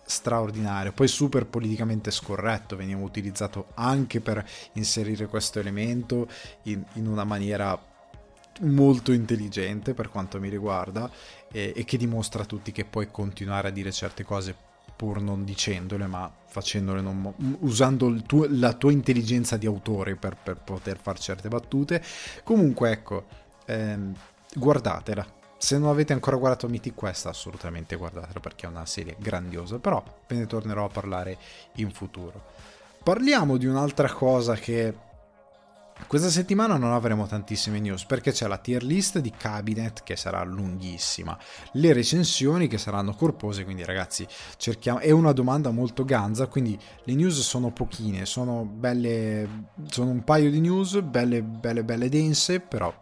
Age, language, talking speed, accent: 20-39, Italian, 150 wpm, native